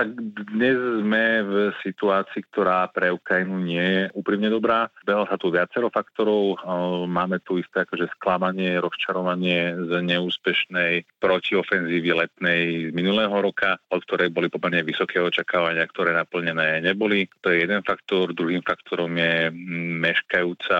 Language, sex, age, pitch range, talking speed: Slovak, male, 40-59, 85-90 Hz, 135 wpm